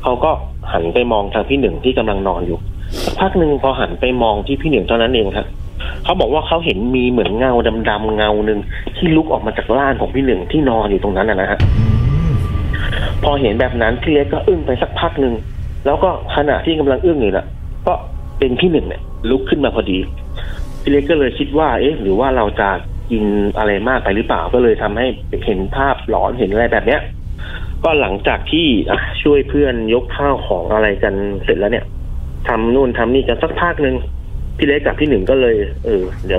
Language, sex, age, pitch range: Thai, male, 30-49, 100-130 Hz